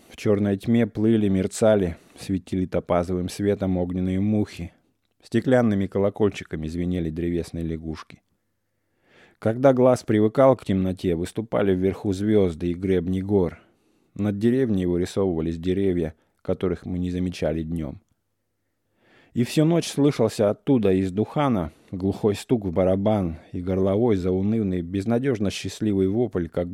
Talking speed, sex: 120 wpm, male